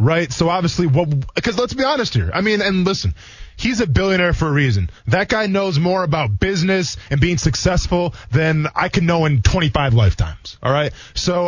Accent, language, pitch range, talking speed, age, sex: American, English, 120-175 Hz, 195 wpm, 20-39, male